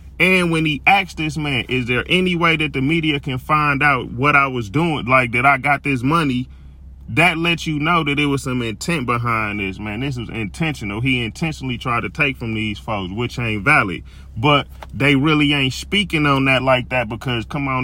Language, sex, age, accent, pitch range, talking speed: English, male, 30-49, American, 120-160 Hz, 215 wpm